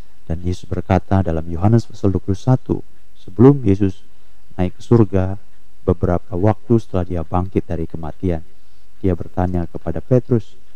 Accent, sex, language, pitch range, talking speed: native, male, Indonesian, 85-115 Hz, 130 wpm